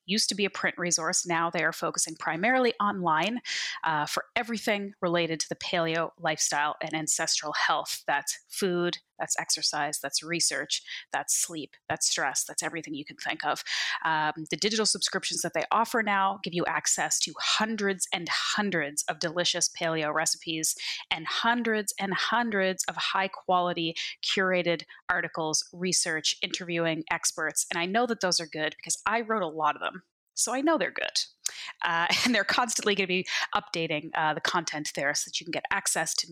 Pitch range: 165-215 Hz